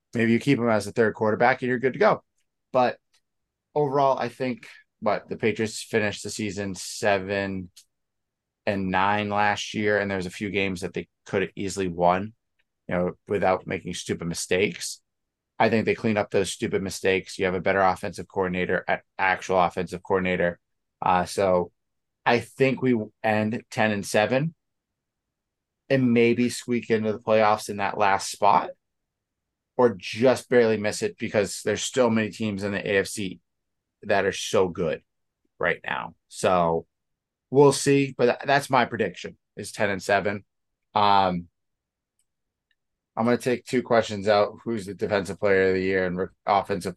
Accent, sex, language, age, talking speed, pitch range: American, male, English, 20-39, 165 wpm, 90-110 Hz